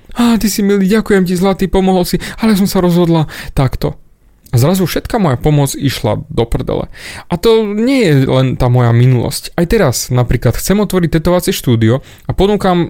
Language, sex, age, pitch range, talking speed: Slovak, male, 30-49, 125-175 Hz, 180 wpm